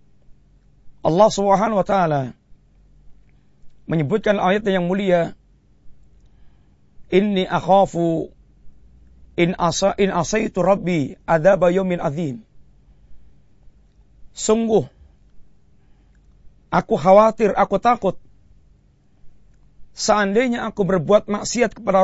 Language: Malay